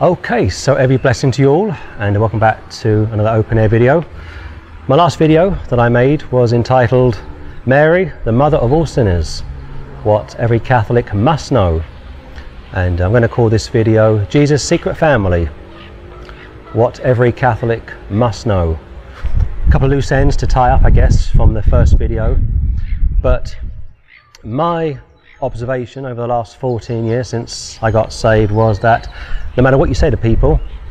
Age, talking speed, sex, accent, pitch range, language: 30-49, 160 wpm, male, British, 85-130 Hz, English